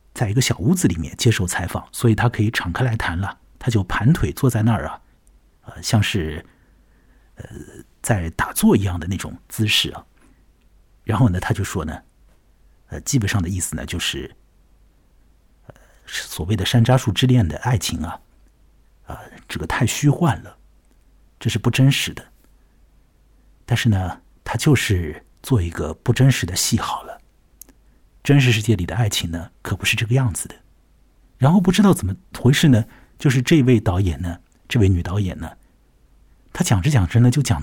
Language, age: Chinese, 50-69